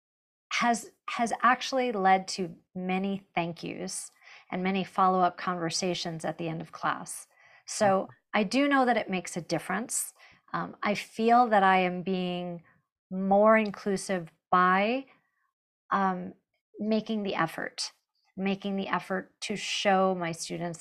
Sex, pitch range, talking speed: female, 175-210 Hz, 140 wpm